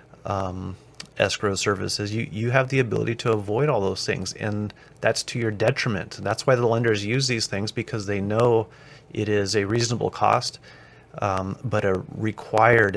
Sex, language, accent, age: male, English, American, 30-49